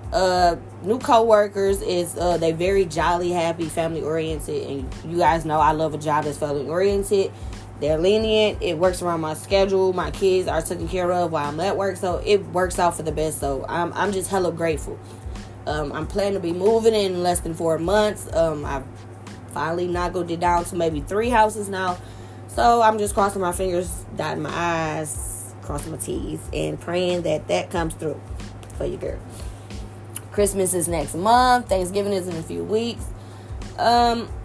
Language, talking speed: English, 185 wpm